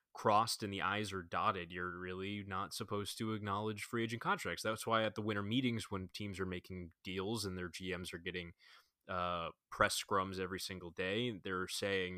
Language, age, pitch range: English, 20-39, 90-110 Hz